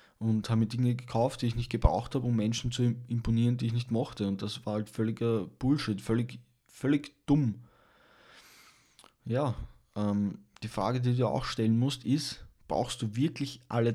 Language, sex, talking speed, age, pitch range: German, male, 180 wpm, 20-39, 105-125 Hz